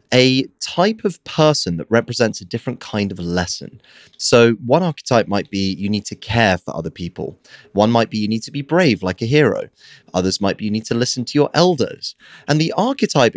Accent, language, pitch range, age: British, English, 95-150 Hz, 30-49